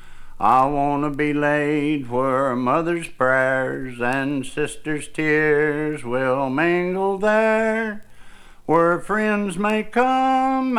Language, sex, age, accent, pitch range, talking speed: English, male, 60-79, American, 145-210 Hz, 105 wpm